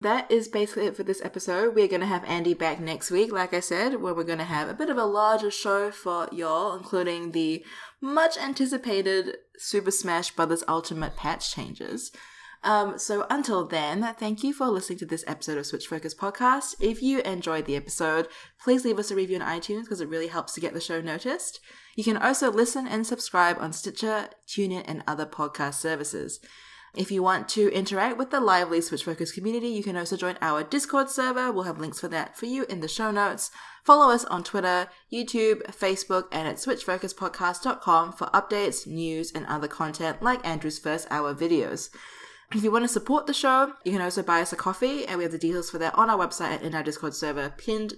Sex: female